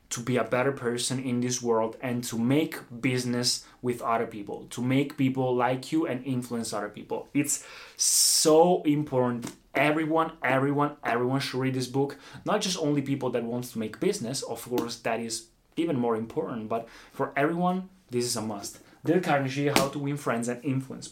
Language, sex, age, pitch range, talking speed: Italian, male, 20-39, 120-145 Hz, 185 wpm